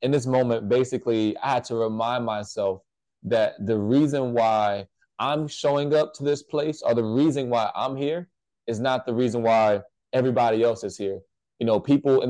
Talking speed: 185 wpm